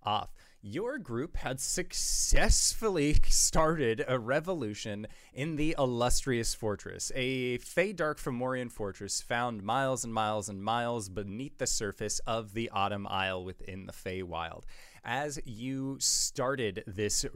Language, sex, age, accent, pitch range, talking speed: English, male, 20-39, American, 105-130 Hz, 130 wpm